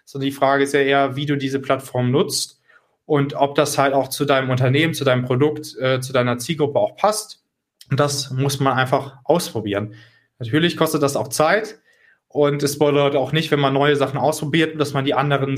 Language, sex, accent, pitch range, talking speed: German, male, German, 130-150 Hz, 205 wpm